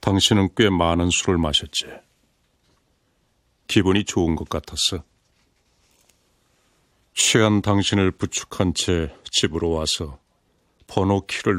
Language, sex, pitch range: Korean, male, 85-100 Hz